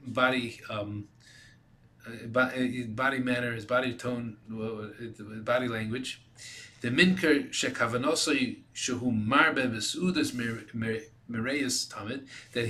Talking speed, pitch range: 100 wpm, 120-165 Hz